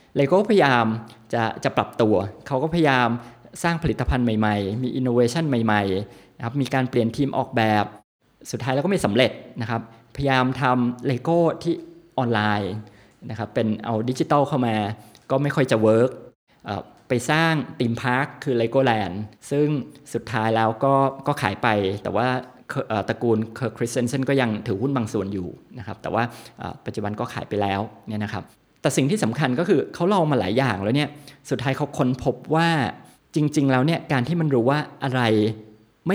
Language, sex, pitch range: Thai, male, 110-140 Hz